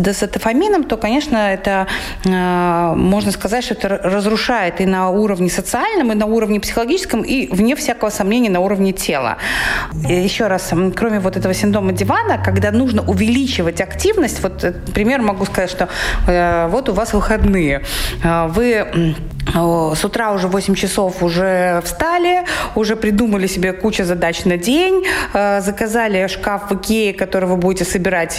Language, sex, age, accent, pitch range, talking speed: Russian, female, 20-39, native, 180-225 Hz, 150 wpm